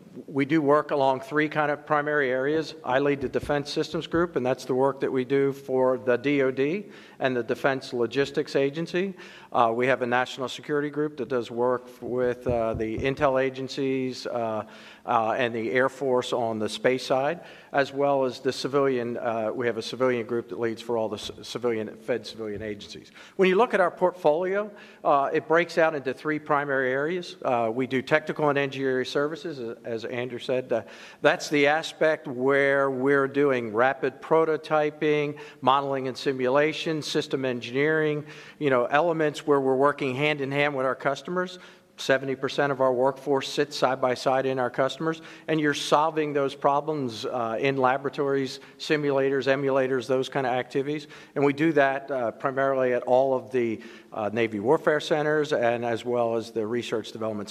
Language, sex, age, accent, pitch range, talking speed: English, male, 50-69, American, 125-150 Hz, 180 wpm